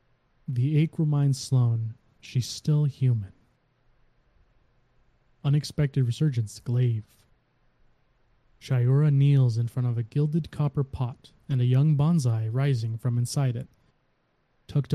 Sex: male